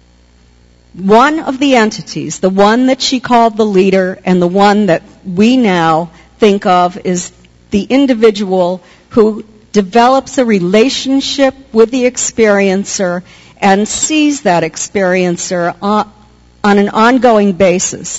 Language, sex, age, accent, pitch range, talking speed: English, female, 50-69, American, 175-225 Hz, 125 wpm